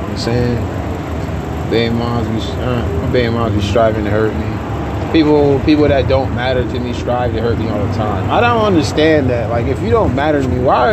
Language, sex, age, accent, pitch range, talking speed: English, male, 20-39, American, 100-125 Hz, 200 wpm